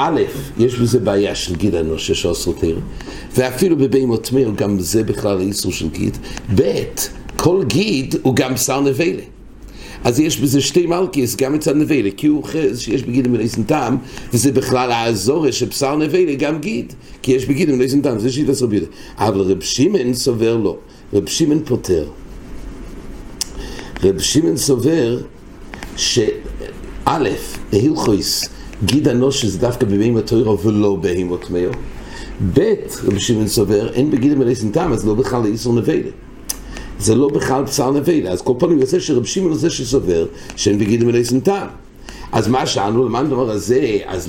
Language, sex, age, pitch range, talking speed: English, male, 60-79, 105-140 Hz, 125 wpm